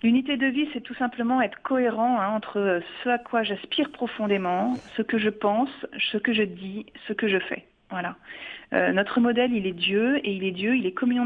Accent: French